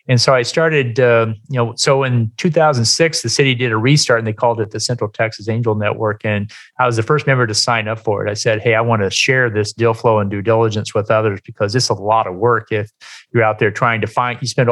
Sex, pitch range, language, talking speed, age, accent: male, 110-125 Hz, English, 265 wpm, 40-59, American